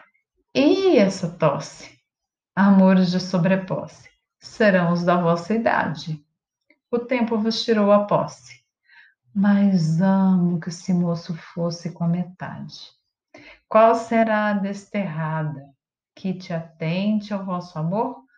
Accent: Brazilian